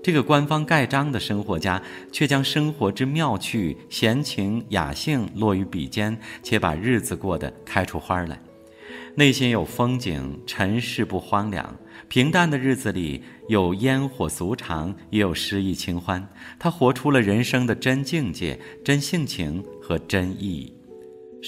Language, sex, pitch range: Chinese, male, 85-125 Hz